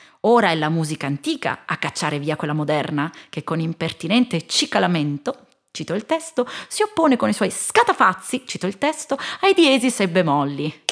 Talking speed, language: 165 wpm, Italian